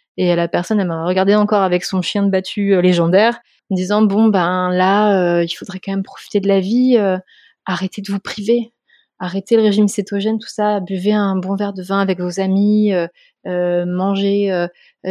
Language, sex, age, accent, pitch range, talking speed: French, female, 20-39, French, 175-205 Hz, 205 wpm